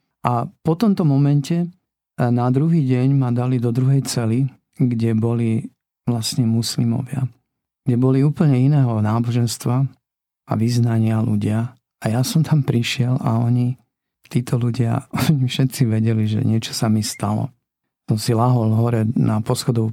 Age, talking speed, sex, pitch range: 50-69, 140 wpm, male, 115-140 Hz